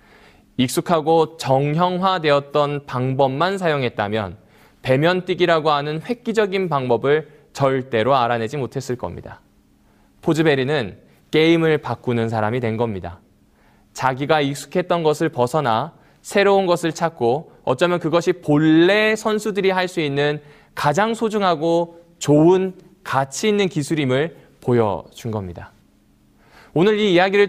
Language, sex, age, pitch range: Korean, male, 20-39, 120-180 Hz